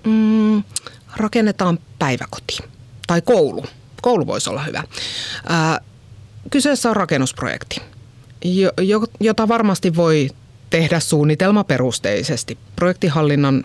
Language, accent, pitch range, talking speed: Finnish, native, 120-165 Hz, 90 wpm